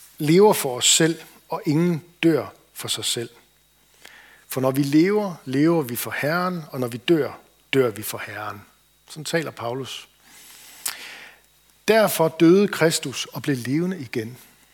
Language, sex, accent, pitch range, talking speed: Danish, male, native, 120-160 Hz, 145 wpm